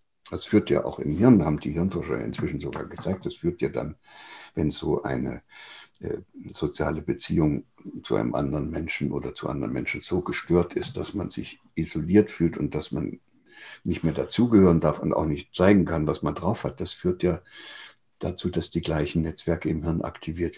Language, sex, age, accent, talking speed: German, male, 60-79, German, 190 wpm